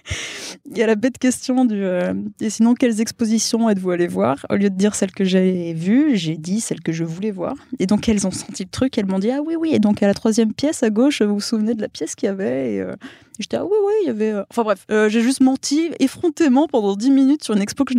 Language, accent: French, French